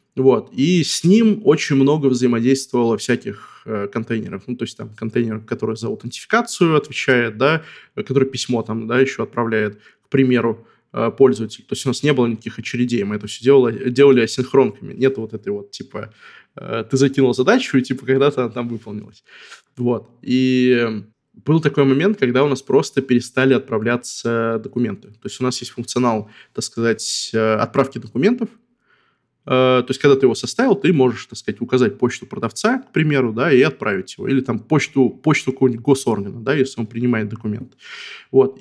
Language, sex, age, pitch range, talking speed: Russian, male, 20-39, 120-140 Hz, 175 wpm